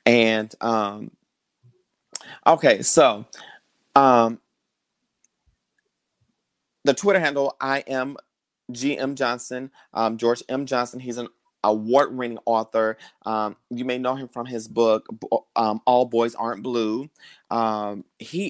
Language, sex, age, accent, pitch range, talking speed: English, male, 30-49, American, 115-130 Hz, 115 wpm